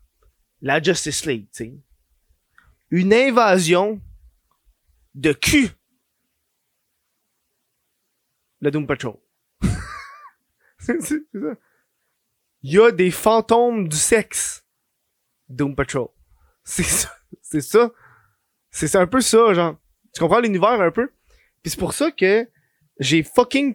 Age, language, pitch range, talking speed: 20-39, French, 140-190 Hz, 115 wpm